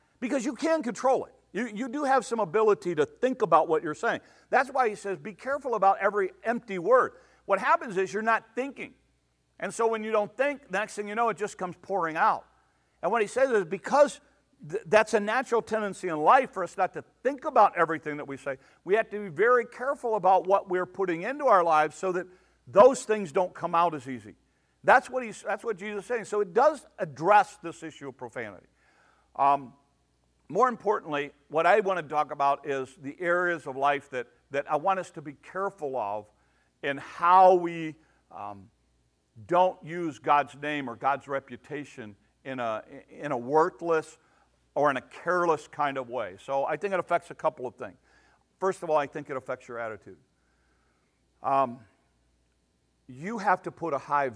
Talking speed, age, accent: 200 wpm, 60-79, American